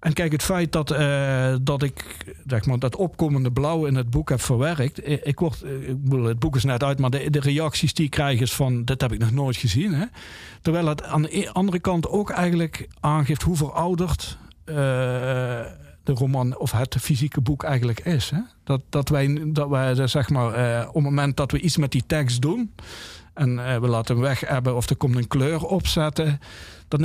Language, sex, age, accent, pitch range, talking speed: Dutch, male, 50-69, Dutch, 125-155 Hz, 215 wpm